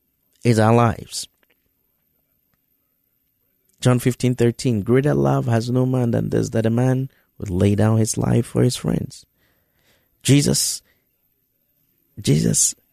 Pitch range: 110-150 Hz